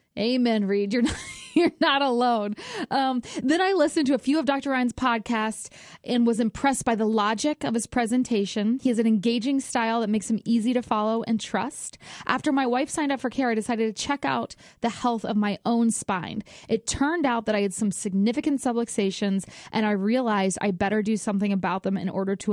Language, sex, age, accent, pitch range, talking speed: English, female, 20-39, American, 200-245 Hz, 210 wpm